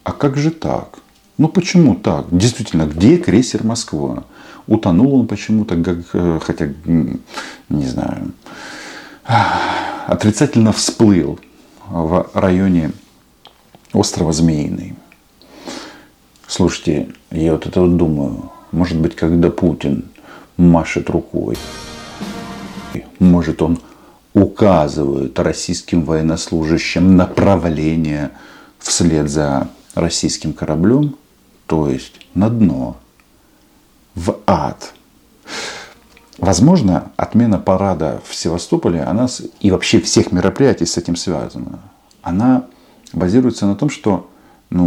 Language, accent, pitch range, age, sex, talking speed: Russian, native, 80-100 Hz, 40-59, male, 95 wpm